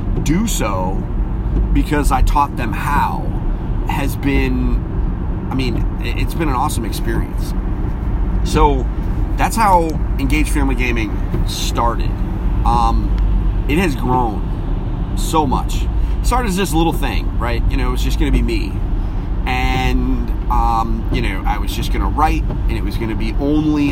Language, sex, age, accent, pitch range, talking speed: English, male, 30-49, American, 100-130 Hz, 145 wpm